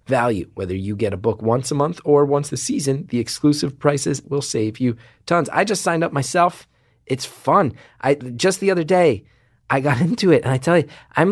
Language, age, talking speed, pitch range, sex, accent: English, 30-49, 215 wpm, 115-165 Hz, male, American